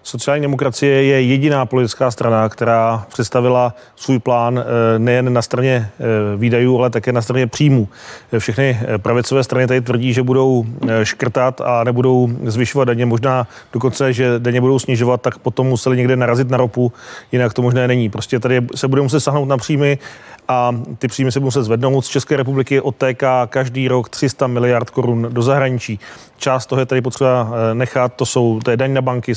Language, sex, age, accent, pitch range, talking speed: Czech, male, 30-49, native, 120-135 Hz, 175 wpm